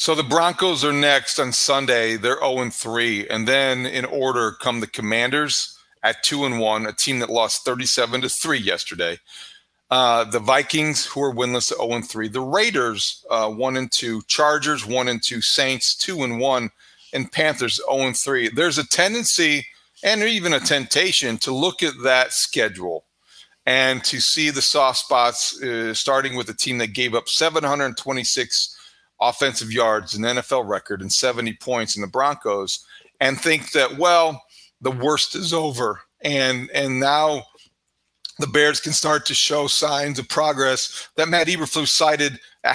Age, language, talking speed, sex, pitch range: 40-59, English, 170 wpm, male, 125-160 Hz